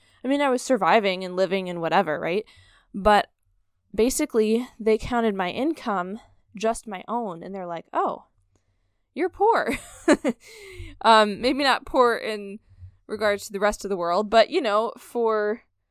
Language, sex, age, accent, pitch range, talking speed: English, female, 20-39, American, 185-250 Hz, 155 wpm